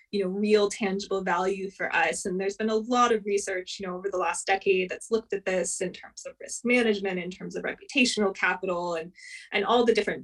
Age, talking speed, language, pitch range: 20-39, 230 wpm, English, 185-220 Hz